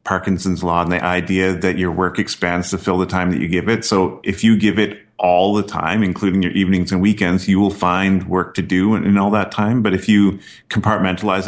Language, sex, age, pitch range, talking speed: English, male, 30-49, 90-105 Hz, 235 wpm